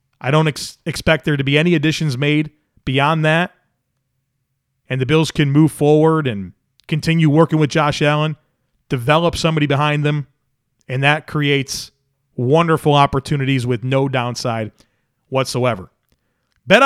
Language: English